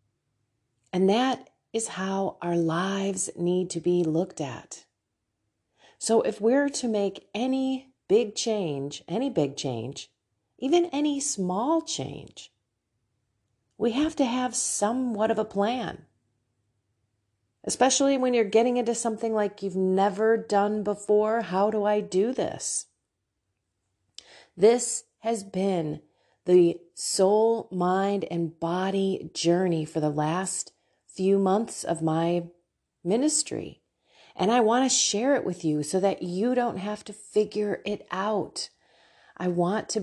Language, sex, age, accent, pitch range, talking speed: English, female, 40-59, American, 165-230 Hz, 130 wpm